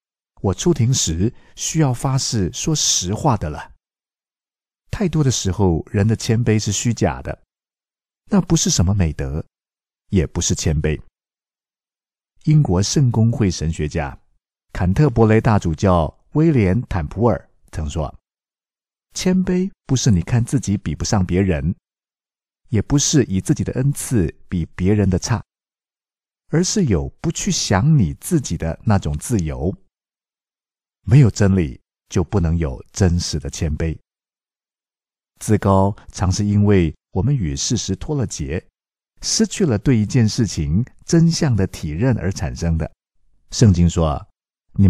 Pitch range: 85-130 Hz